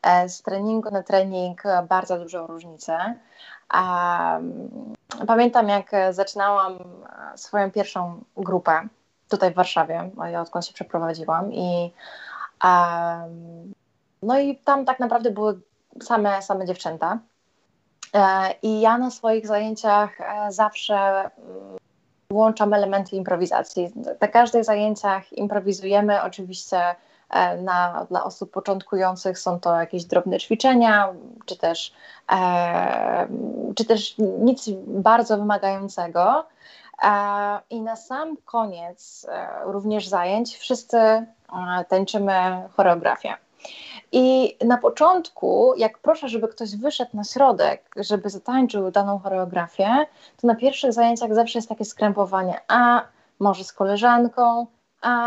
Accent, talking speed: native, 100 wpm